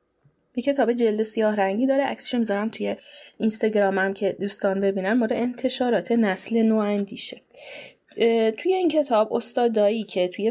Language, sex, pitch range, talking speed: Persian, female, 195-245 Hz, 130 wpm